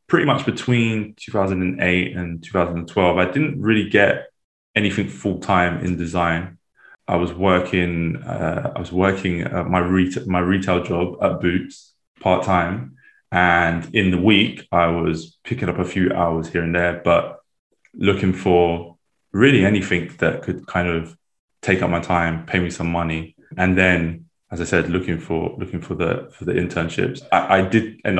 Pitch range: 85-95 Hz